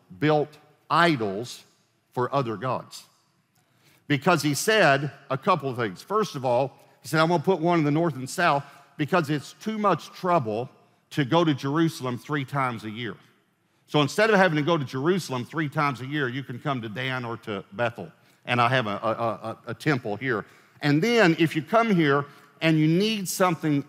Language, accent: English, American